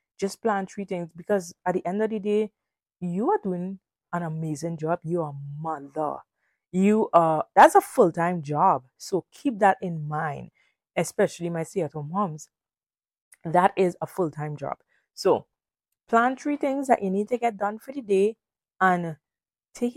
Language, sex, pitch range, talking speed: English, female, 170-220 Hz, 165 wpm